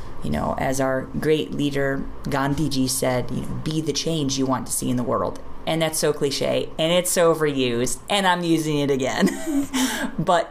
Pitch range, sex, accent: 135-160 Hz, female, American